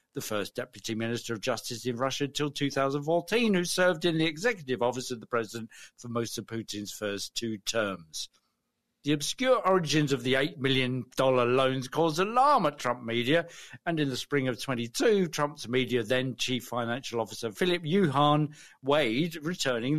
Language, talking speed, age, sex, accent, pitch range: English, 160 wpm, 50-69, male, British, 120-170 Hz